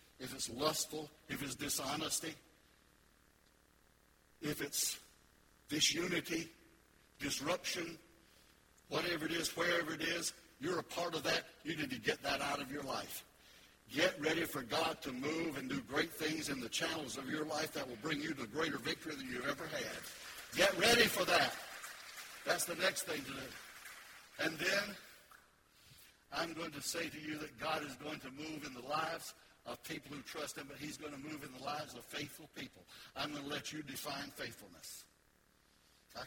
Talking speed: 180 wpm